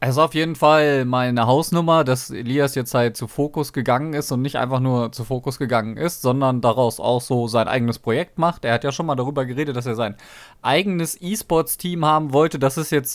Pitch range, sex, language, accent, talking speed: 130-170 Hz, male, German, German, 220 wpm